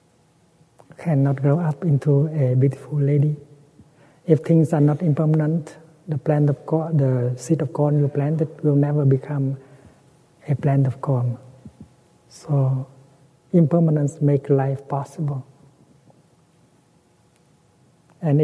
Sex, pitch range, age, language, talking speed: male, 135-155 Hz, 60-79, English, 115 wpm